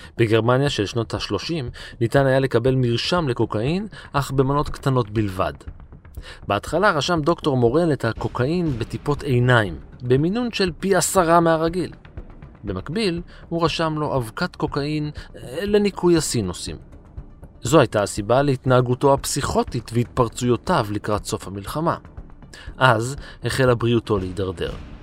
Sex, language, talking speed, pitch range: male, Hebrew, 115 wpm, 105-140 Hz